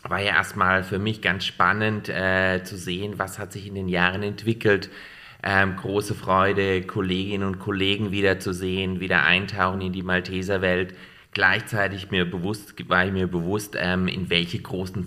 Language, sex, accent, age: German, male, German, 30-49